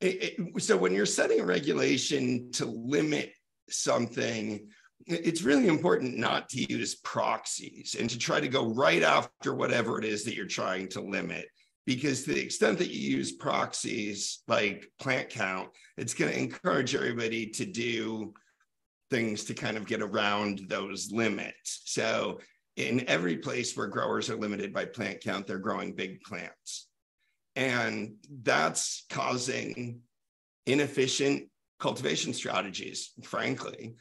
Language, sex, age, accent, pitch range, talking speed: English, male, 50-69, American, 110-140 Hz, 140 wpm